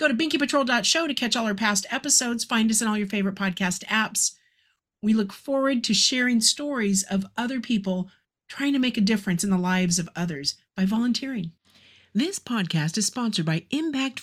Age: 50-69